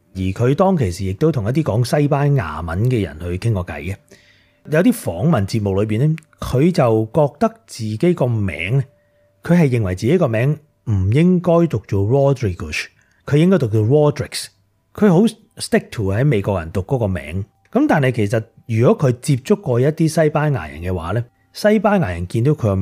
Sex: male